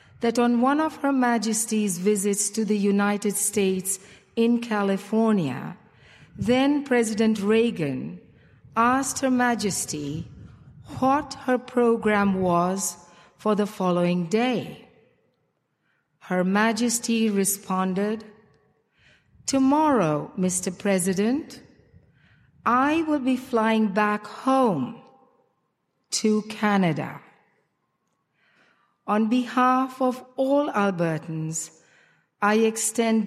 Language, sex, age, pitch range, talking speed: English, female, 40-59, 195-235 Hz, 85 wpm